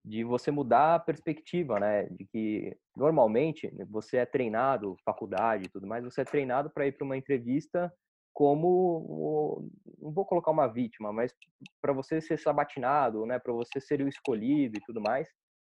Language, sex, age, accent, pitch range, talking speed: Portuguese, male, 20-39, Brazilian, 110-160 Hz, 170 wpm